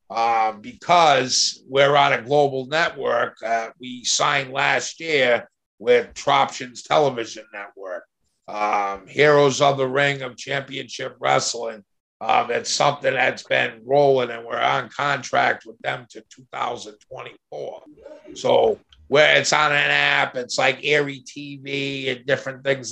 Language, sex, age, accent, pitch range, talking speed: English, male, 50-69, American, 125-140 Hz, 140 wpm